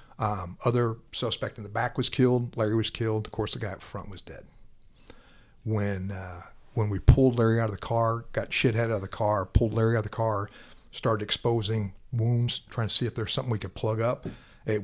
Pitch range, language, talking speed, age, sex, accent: 100-120 Hz, English, 225 wpm, 50-69, male, American